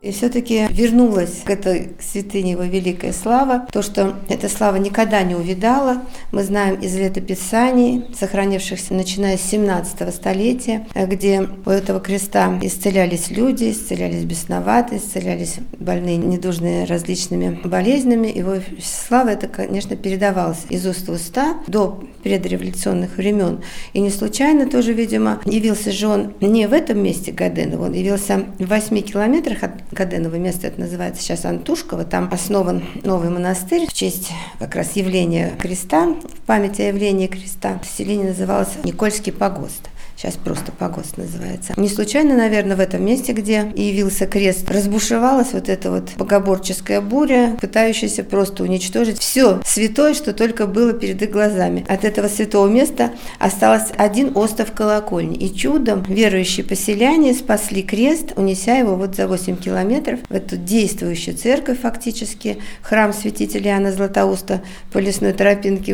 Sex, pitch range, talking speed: female, 185-220 Hz, 145 wpm